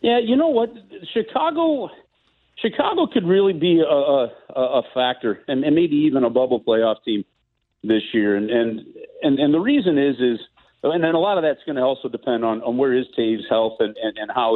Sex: male